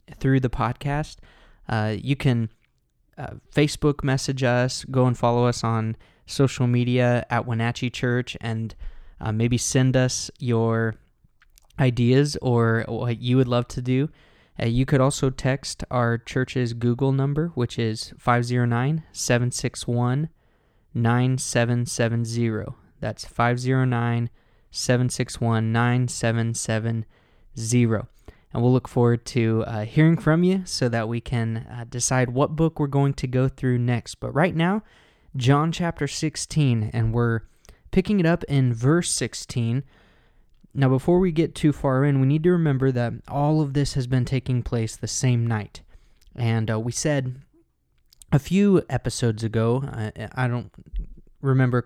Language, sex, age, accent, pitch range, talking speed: English, male, 20-39, American, 115-140 Hz, 140 wpm